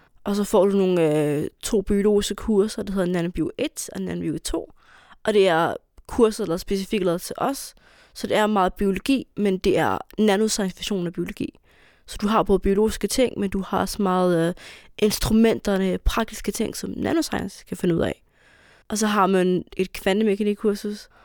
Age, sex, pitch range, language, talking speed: 20-39, female, 185-215 Hz, Danish, 180 wpm